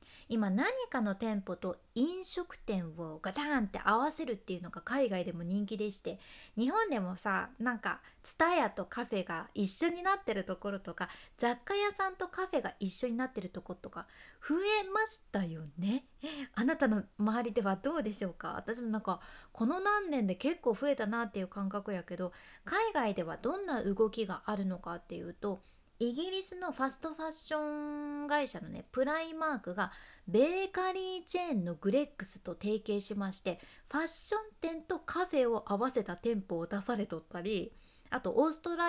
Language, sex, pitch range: Japanese, female, 200-310 Hz